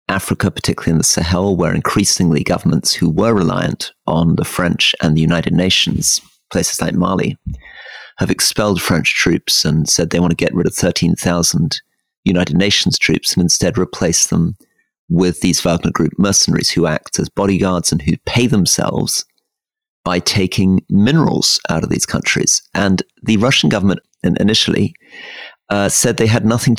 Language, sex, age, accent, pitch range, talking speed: English, male, 40-59, British, 95-125 Hz, 160 wpm